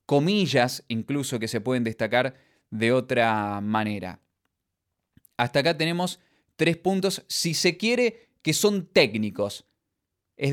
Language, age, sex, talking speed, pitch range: Spanish, 20-39, male, 120 wpm, 110-140 Hz